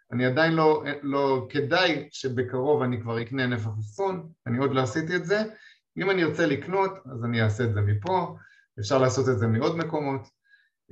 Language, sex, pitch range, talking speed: Hebrew, male, 120-160 Hz, 175 wpm